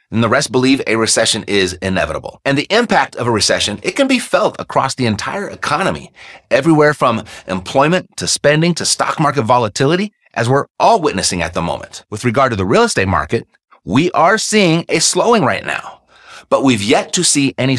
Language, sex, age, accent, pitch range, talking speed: English, male, 30-49, American, 110-170 Hz, 195 wpm